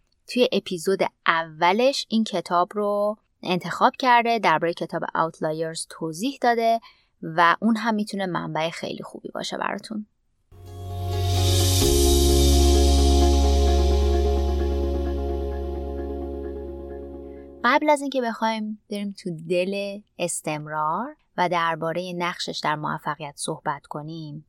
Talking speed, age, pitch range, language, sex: 90 wpm, 20-39, 155-205 Hz, Persian, female